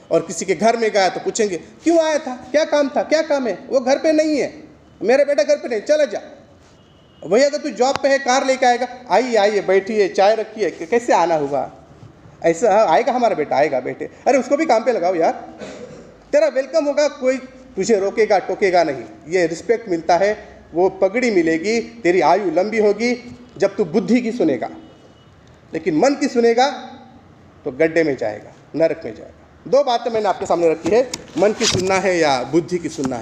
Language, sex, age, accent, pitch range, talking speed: Hindi, male, 40-59, native, 160-245 Hz, 200 wpm